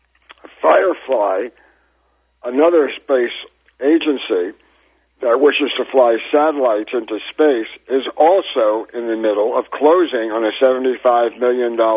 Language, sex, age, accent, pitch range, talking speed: English, male, 60-79, American, 115-150 Hz, 110 wpm